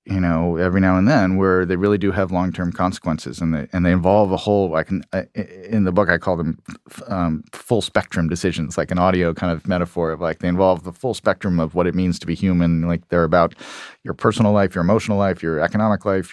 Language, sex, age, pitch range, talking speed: English, male, 40-59, 90-110 Hz, 240 wpm